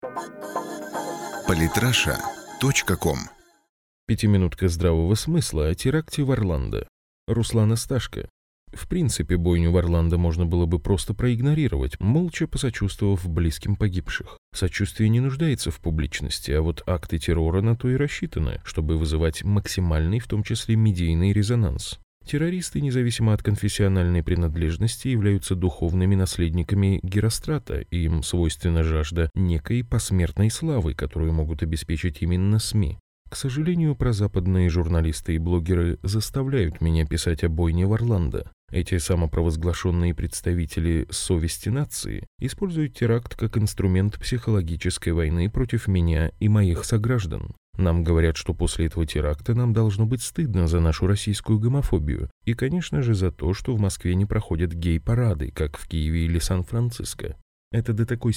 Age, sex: 20-39, male